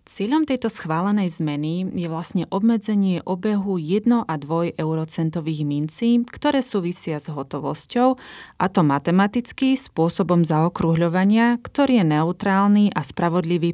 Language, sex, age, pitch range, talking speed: Slovak, female, 30-49, 160-195 Hz, 120 wpm